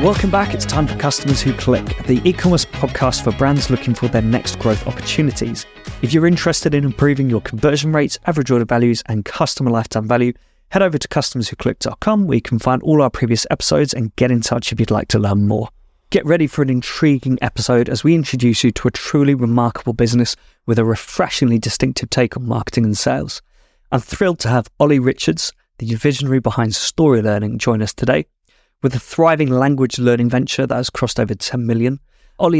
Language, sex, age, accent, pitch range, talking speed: English, male, 20-39, British, 115-140 Hz, 195 wpm